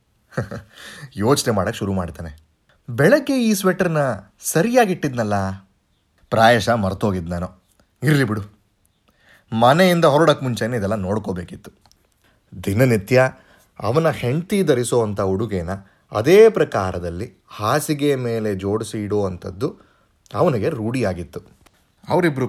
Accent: native